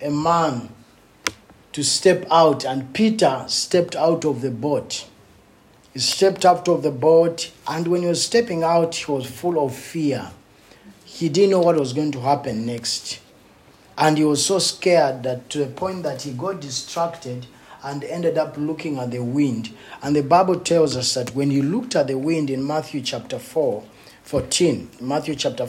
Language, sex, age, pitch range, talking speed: English, male, 50-69, 130-170 Hz, 180 wpm